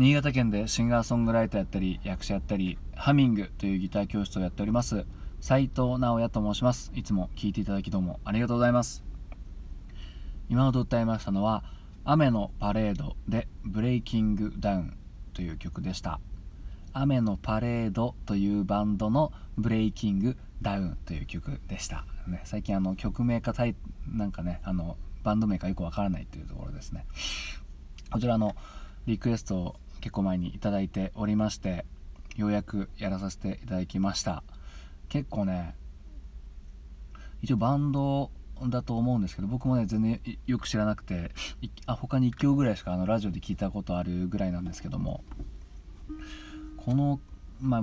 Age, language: 20-39, Japanese